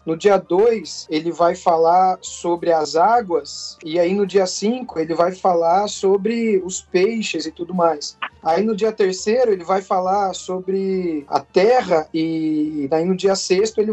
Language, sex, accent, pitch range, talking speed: Portuguese, male, Brazilian, 165-215 Hz, 170 wpm